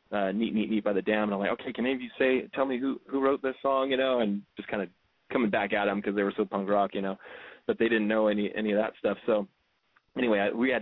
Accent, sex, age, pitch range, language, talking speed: American, male, 20-39, 105-115 Hz, English, 305 wpm